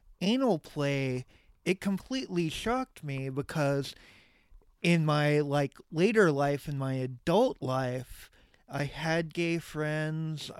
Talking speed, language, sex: 115 wpm, English, male